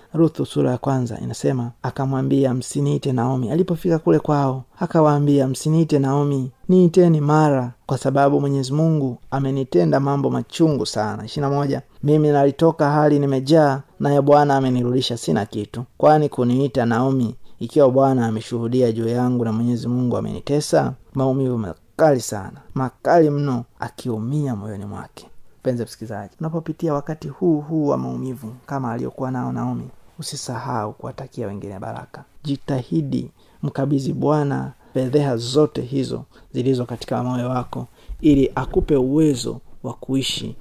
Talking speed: 130 wpm